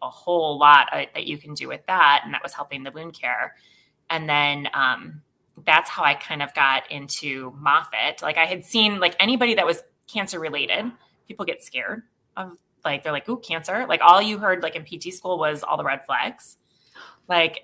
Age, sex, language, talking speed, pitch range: 20-39, female, English, 205 wpm, 145-170 Hz